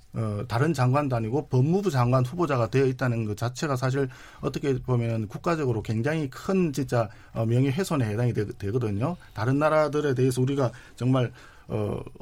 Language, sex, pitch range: Korean, male, 115-155 Hz